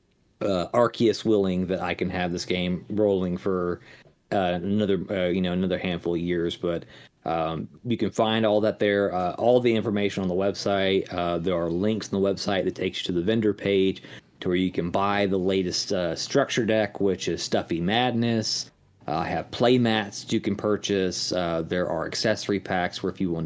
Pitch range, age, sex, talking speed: 85-105 Hz, 30-49, male, 205 wpm